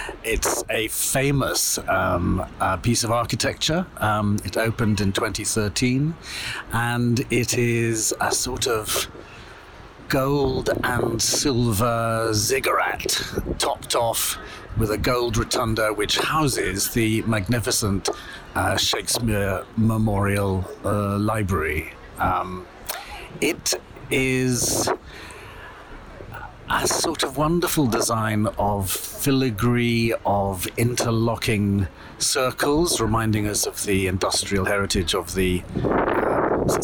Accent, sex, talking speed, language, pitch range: British, male, 100 wpm, English, 105-125 Hz